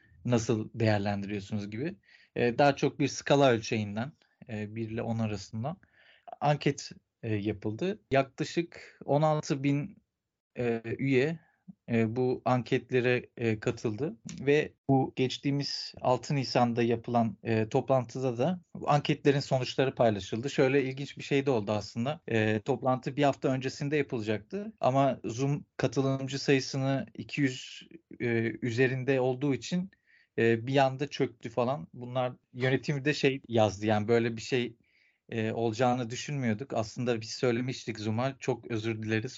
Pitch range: 115-140 Hz